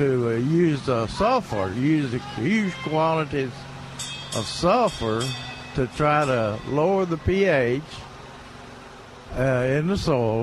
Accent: American